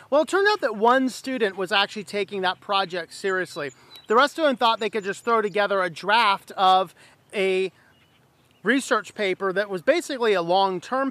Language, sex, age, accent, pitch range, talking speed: English, male, 40-59, American, 190-245 Hz, 185 wpm